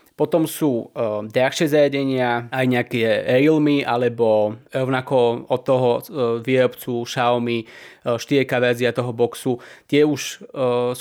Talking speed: 130 wpm